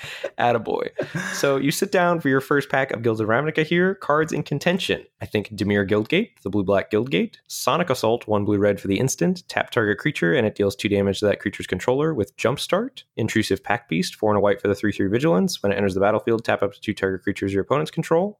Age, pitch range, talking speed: 20-39, 100-130 Hz, 250 wpm